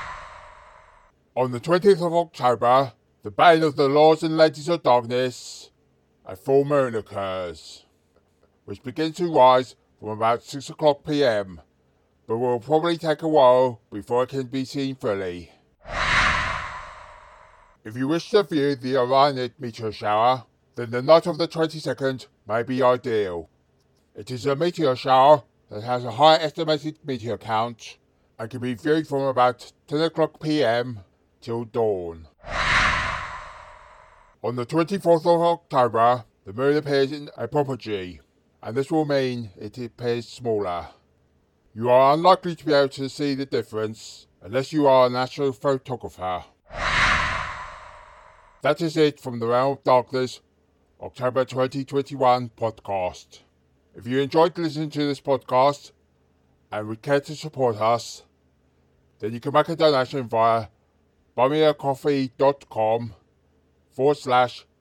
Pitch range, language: 105-145 Hz, English